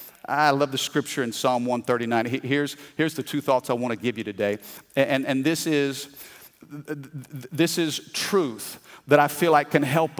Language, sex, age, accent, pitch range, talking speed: English, male, 50-69, American, 115-155 Hz, 175 wpm